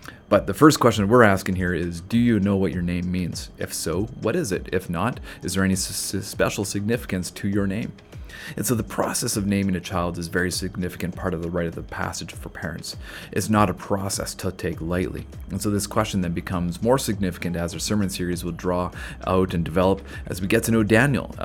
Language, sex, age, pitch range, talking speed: English, male, 30-49, 90-105 Hz, 225 wpm